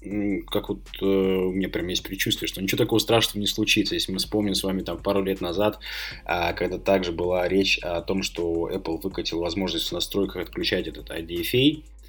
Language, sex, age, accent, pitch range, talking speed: Russian, male, 20-39, native, 95-110 Hz, 180 wpm